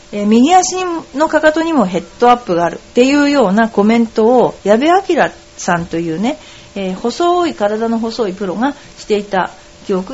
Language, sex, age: Japanese, female, 40-59